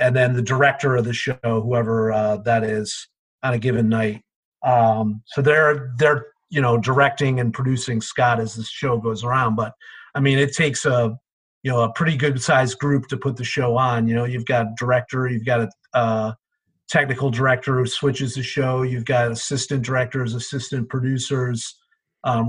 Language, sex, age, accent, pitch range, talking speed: English, male, 40-59, American, 120-140 Hz, 185 wpm